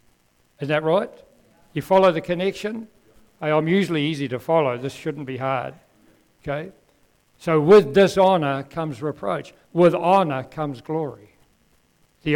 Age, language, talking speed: 60-79, English, 130 wpm